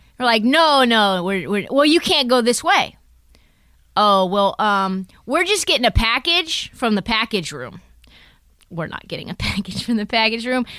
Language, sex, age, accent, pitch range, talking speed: English, female, 20-39, American, 195-250 Hz, 170 wpm